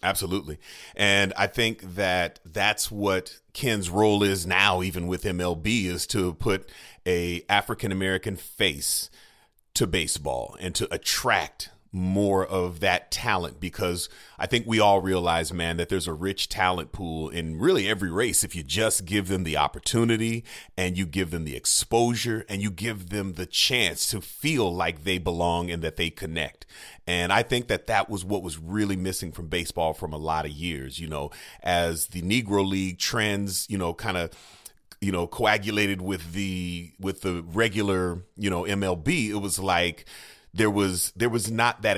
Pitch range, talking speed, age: 85-105 Hz, 175 wpm, 30-49